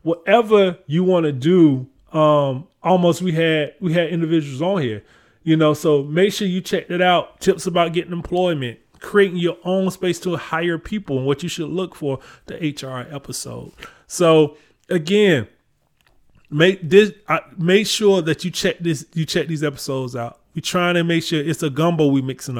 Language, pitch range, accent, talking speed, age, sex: English, 140-175 Hz, American, 185 wpm, 20-39, male